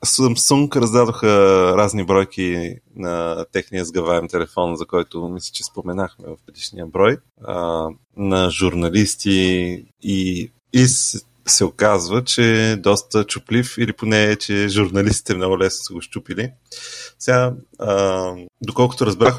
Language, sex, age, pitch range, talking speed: Bulgarian, male, 30-49, 95-115 Hz, 120 wpm